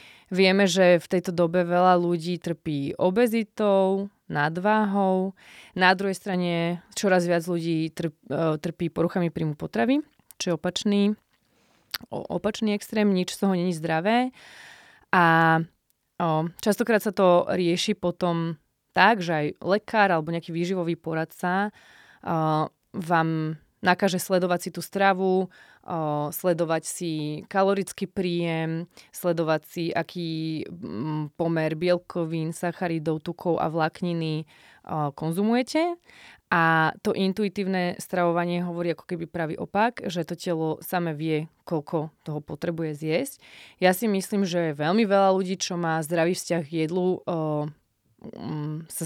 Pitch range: 160-190 Hz